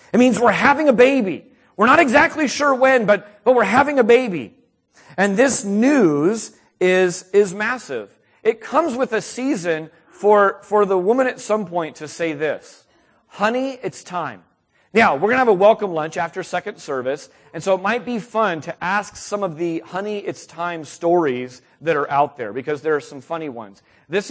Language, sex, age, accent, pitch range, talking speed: English, male, 40-59, American, 150-210 Hz, 195 wpm